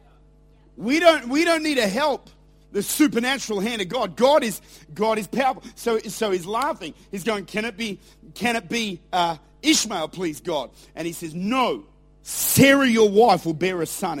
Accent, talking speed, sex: Australian, 185 wpm, male